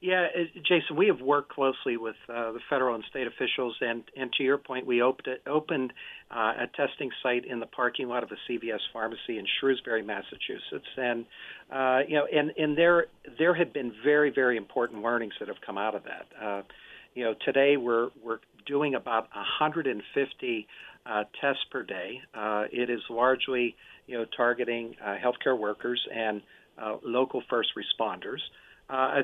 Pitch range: 115-140 Hz